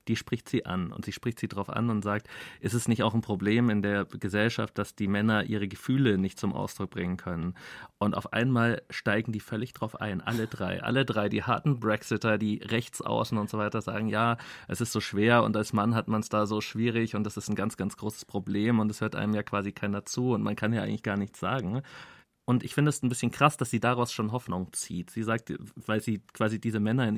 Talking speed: 245 wpm